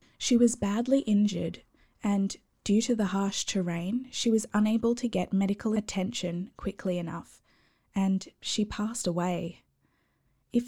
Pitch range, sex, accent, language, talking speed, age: 185-220 Hz, female, Australian, English, 135 wpm, 20-39